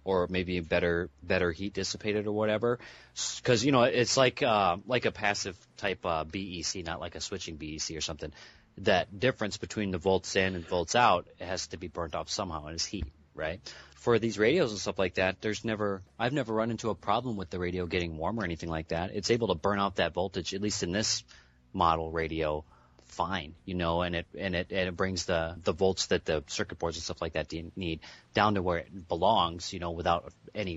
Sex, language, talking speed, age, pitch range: male, English, 220 wpm, 30-49, 80-100 Hz